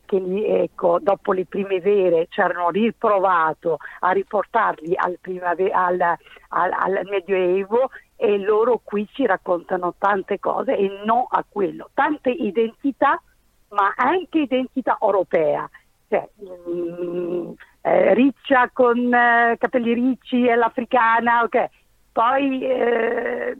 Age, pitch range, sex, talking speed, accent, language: 50-69, 190-245 Hz, female, 120 wpm, native, Italian